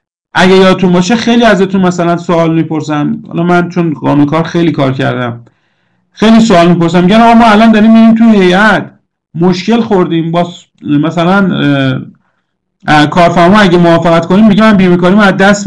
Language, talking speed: Persian, 155 wpm